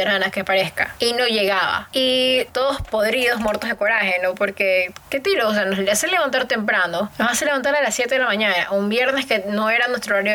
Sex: female